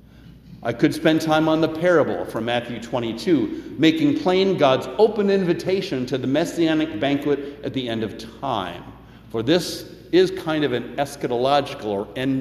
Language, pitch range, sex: English, 125-185 Hz, male